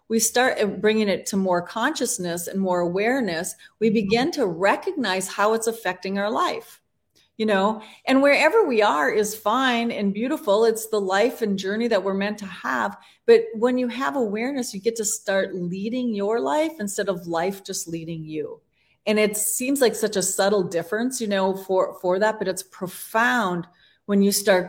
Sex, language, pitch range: female, English, 185-235 Hz